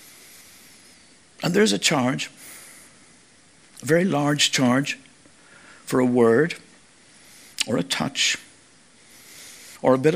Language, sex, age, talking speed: English, male, 60-79, 100 wpm